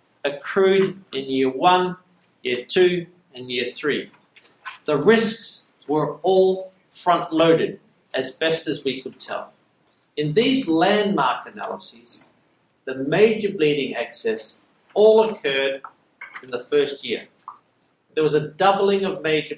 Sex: male